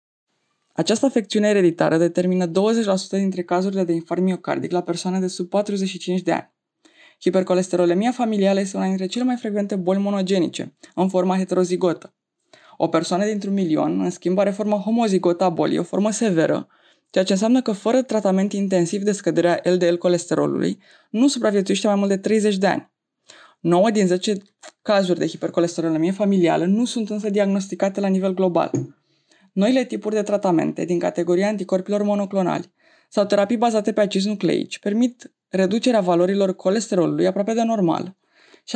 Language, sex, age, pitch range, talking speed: Romanian, female, 20-39, 180-215 Hz, 150 wpm